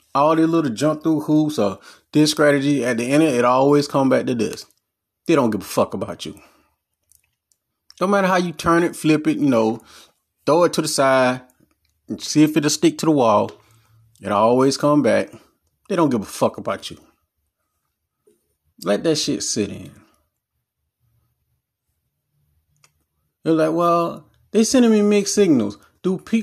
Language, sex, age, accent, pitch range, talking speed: English, male, 30-49, American, 115-160 Hz, 175 wpm